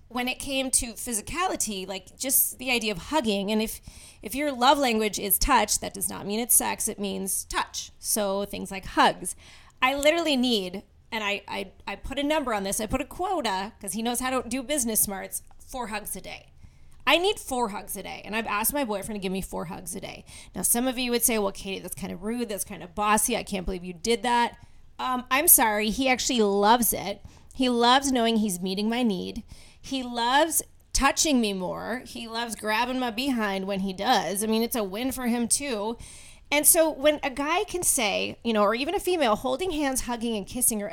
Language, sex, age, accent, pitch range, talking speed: English, female, 30-49, American, 205-265 Hz, 225 wpm